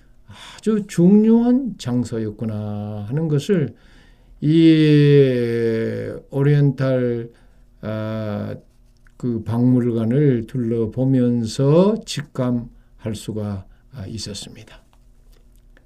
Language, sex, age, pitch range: Korean, male, 50-69, 115-140 Hz